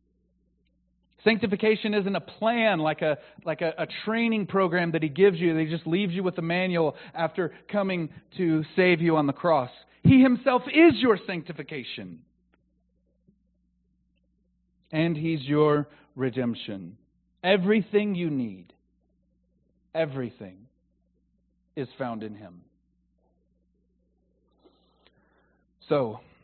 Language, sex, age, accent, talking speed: English, male, 40-59, American, 110 wpm